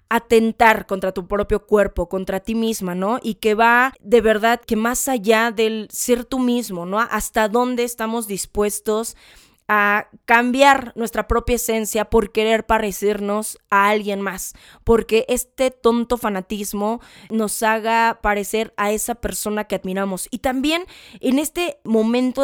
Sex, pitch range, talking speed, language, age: female, 205-245 Hz, 145 wpm, Spanish, 20-39